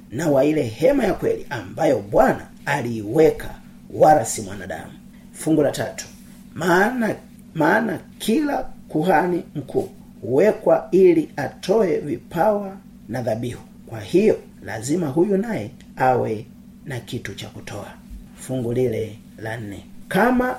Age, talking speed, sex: 40-59, 110 wpm, male